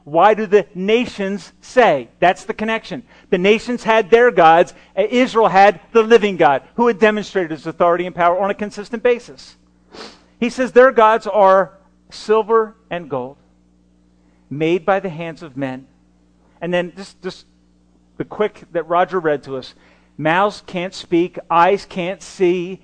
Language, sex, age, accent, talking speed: English, male, 40-59, American, 160 wpm